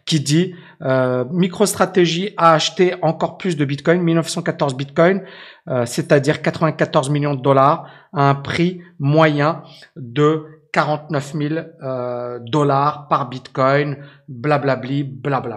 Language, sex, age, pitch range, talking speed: French, male, 50-69, 145-180 Hz, 125 wpm